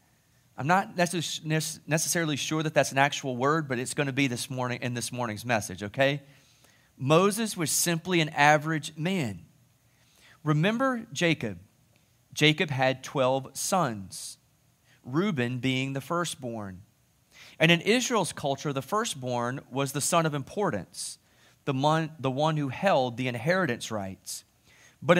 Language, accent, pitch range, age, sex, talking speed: English, American, 125-175 Hz, 30-49, male, 135 wpm